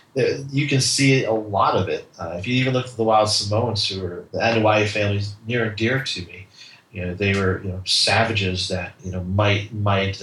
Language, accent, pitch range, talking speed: English, American, 105-135 Hz, 225 wpm